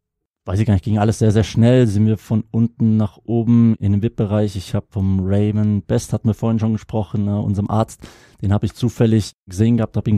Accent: German